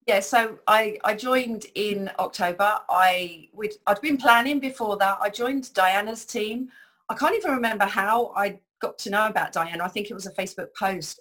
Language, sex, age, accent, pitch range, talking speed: English, female, 40-59, British, 175-215 Hz, 200 wpm